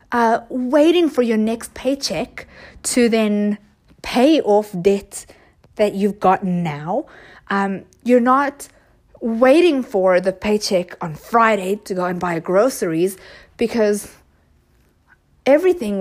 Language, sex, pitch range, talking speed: English, female, 200-285 Hz, 115 wpm